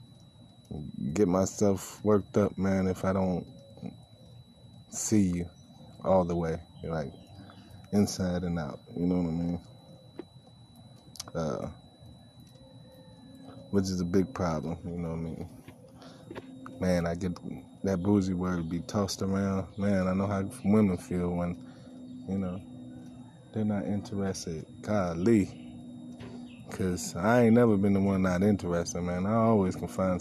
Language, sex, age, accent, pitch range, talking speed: English, male, 20-39, American, 90-105 Hz, 135 wpm